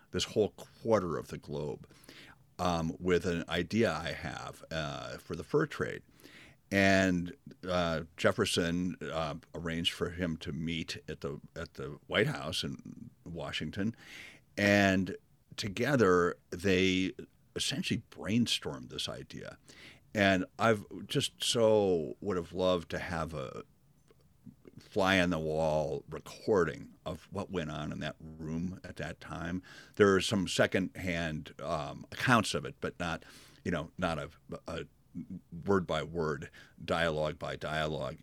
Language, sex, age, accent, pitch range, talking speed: English, male, 50-69, American, 85-110 Hz, 135 wpm